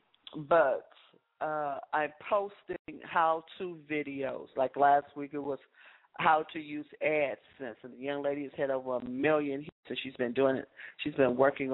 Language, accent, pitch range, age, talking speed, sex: English, American, 130-155 Hz, 40-59, 165 wpm, female